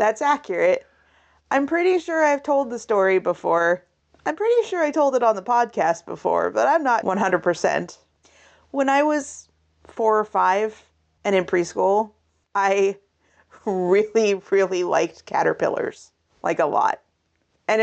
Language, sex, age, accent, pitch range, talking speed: English, female, 30-49, American, 175-225 Hz, 140 wpm